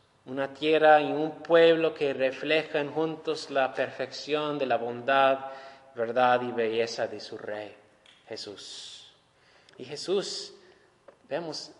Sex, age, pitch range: male, 20-39, 145-185 Hz